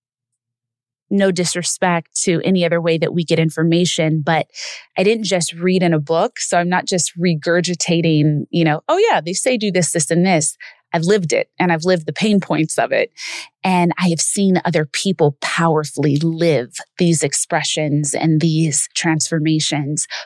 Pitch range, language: 155-185 Hz, English